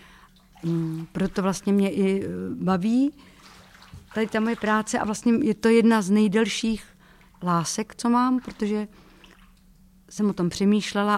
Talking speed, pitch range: 135 wpm, 165-195 Hz